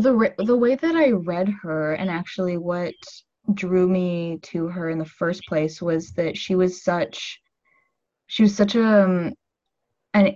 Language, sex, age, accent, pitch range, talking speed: English, female, 20-39, American, 160-200 Hz, 160 wpm